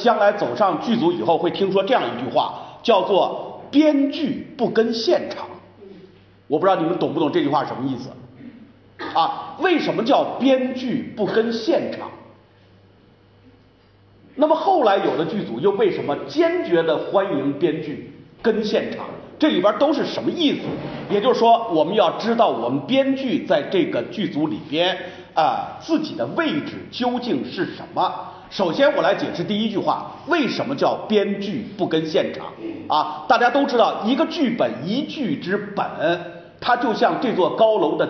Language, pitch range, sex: Chinese, 200-290 Hz, male